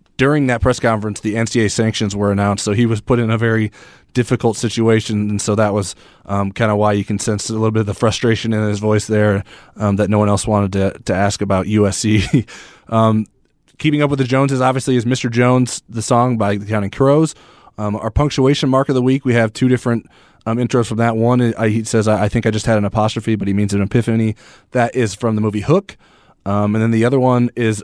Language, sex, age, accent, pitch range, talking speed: English, male, 20-39, American, 105-120 Hz, 235 wpm